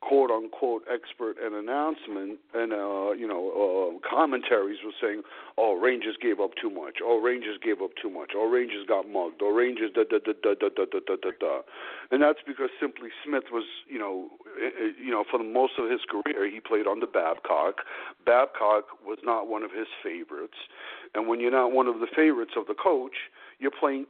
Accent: American